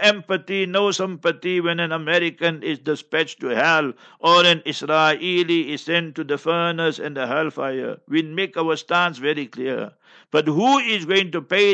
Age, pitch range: 60-79, 155-180 Hz